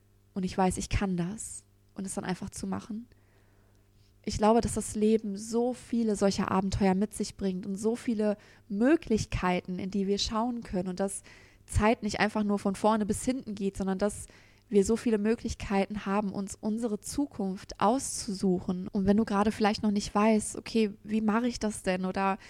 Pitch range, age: 195-220 Hz, 20-39